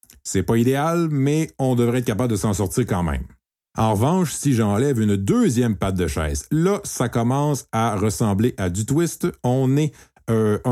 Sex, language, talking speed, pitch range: male, French, 185 wpm, 90-125 Hz